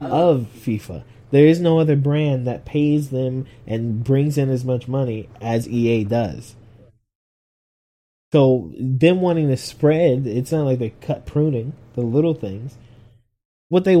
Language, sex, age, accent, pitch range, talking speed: English, male, 20-39, American, 115-145 Hz, 150 wpm